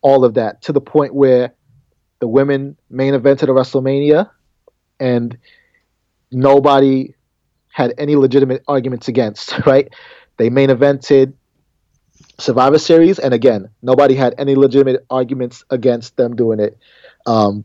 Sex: male